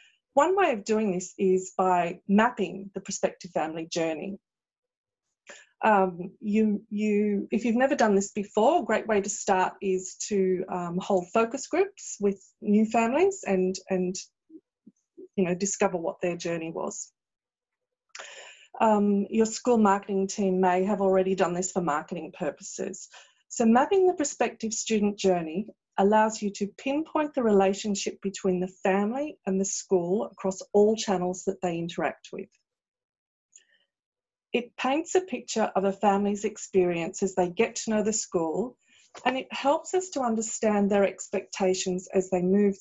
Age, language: 30-49, English